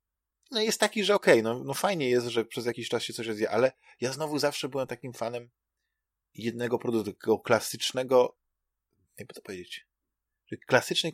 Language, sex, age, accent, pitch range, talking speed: Polish, male, 20-39, native, 115-140 Hz, 170 wpm